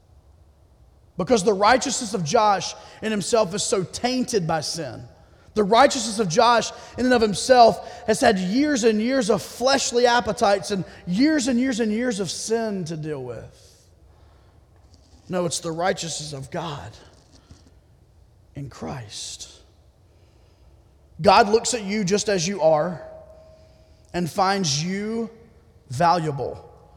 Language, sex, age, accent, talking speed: English, male, 30-49, American, 130 wpm